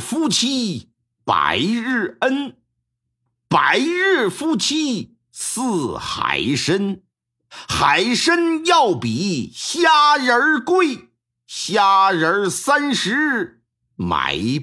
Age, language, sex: 50-69, Chinese, male